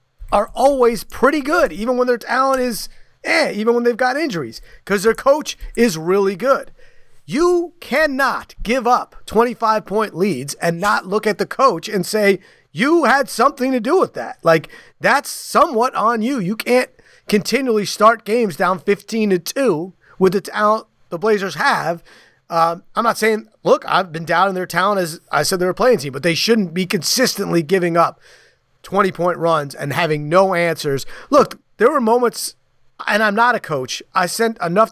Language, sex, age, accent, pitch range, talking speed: English, male, 30-49, American, 175-240 Hz, 180 wpm